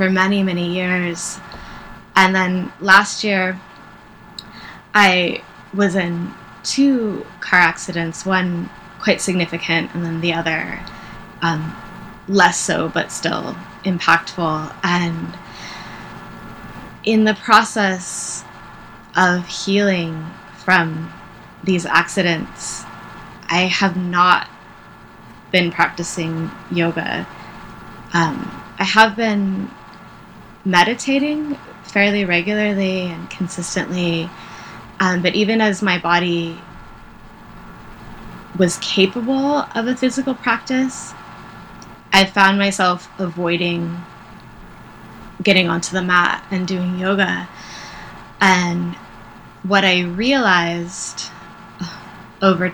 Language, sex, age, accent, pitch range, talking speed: English, female, 20-39, American, 170-200 Hz, 90 wpm